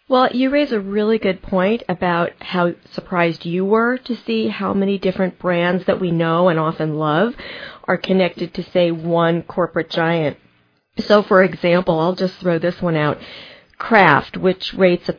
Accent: American